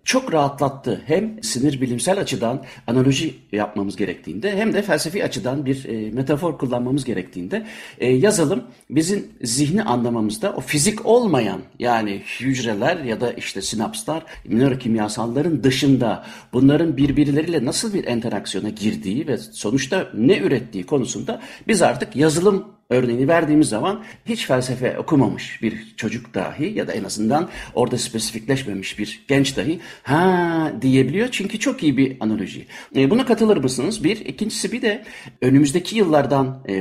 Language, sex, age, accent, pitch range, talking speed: Turkish, male, 60-79, native, 120-180 Hz, 140 wpm